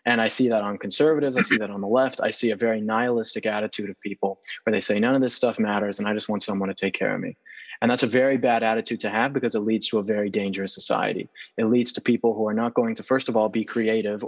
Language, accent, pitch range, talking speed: English, American, 105-130 Hz, 285 wpm